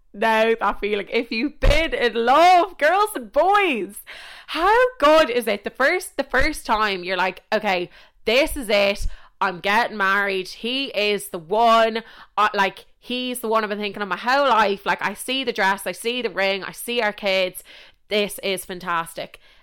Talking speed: 185 wpm